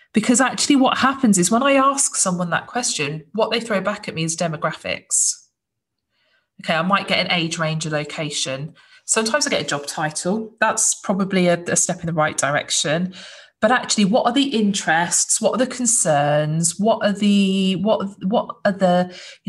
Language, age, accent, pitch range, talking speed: English, 20-39, British, 170-205 Hz, 190 wpm